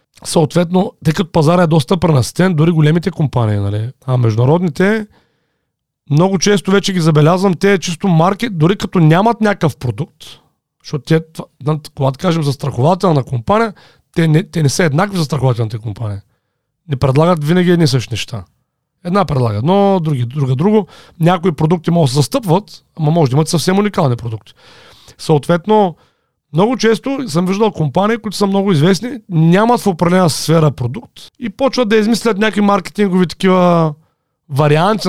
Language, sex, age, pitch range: Bulgarian, male, 40-59, 150-200 Hz